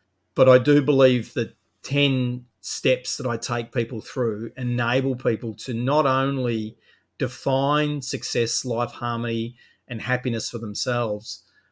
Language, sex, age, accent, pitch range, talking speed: English, male, 40-59, Australian, 115-140 Hz, 130 wpm